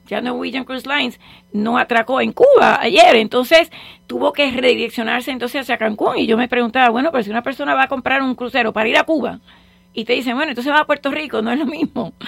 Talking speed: 230 wpm